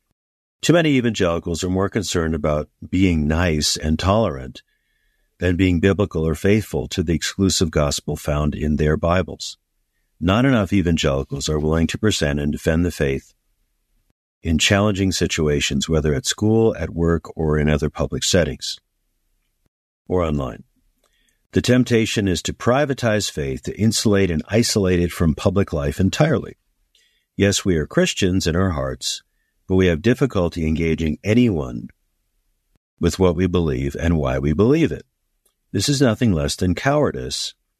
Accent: American